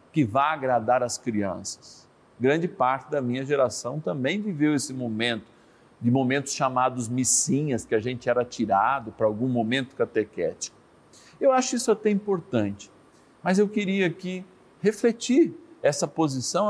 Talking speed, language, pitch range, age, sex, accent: 140 wpm, Portuguese, 125-195 Hz, 50-69, male, Brazilian